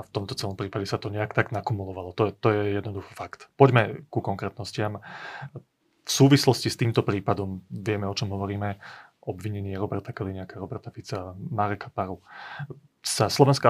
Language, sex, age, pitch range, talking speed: Slovak, male, 30-49, 110-140 Hz, 160 wpm